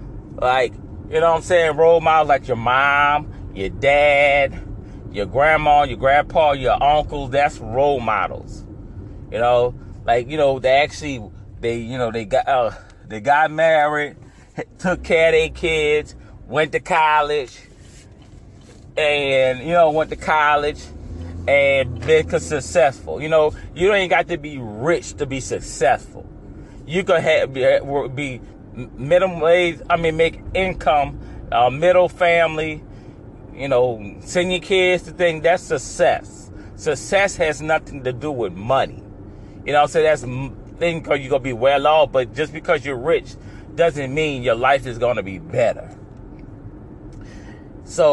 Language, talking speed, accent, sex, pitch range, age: English, 155 wpm, American, male, 110-155 Hz, 30-49